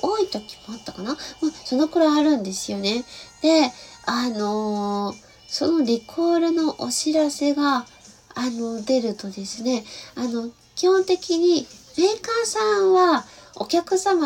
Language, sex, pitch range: Japanese, female, 225-300 Hz